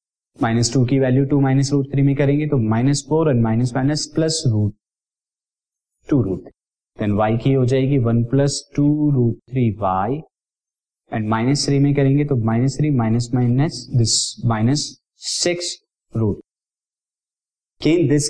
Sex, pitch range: male, 115-145 Hz